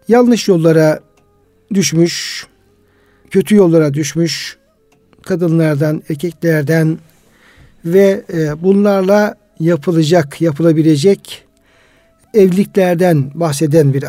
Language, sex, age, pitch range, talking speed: Turkish, male, 60-79, 155-195 Hz, 65 wpm